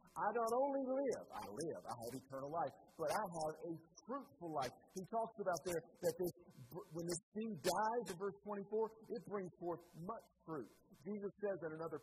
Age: 50-69